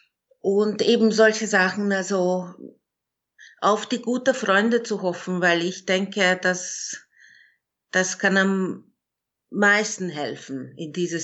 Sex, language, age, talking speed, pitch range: female, German, 50-69, 115 wpm, 180-215 Hz